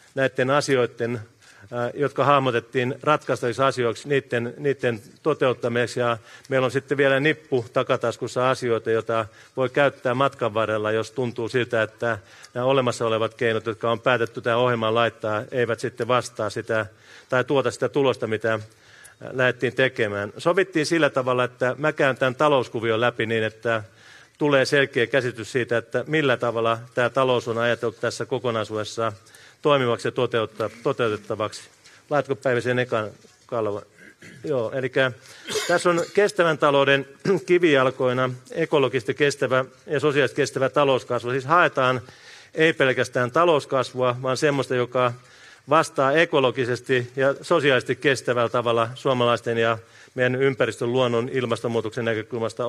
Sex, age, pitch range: male, 40-59, 115-135 Hz